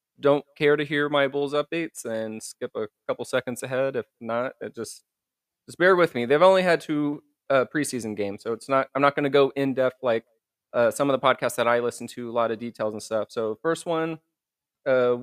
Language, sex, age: English, male, 20-39